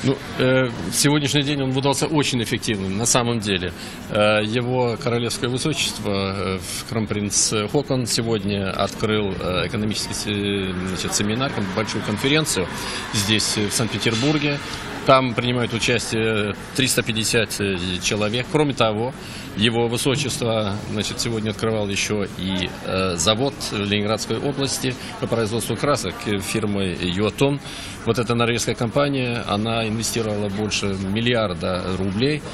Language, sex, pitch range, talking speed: Russian, male, 100-120 Hz, 110 wpm